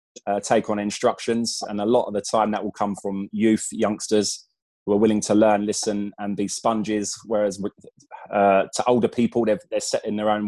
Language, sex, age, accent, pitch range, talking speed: English, male, 20-39, British, 100-110 Hz, 205 wpm